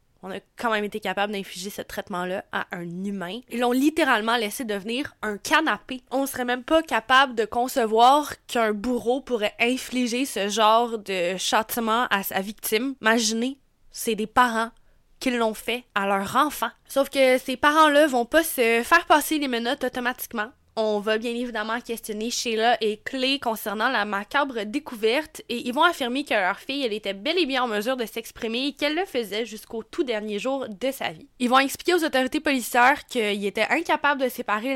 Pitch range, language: 220-270 Hz, French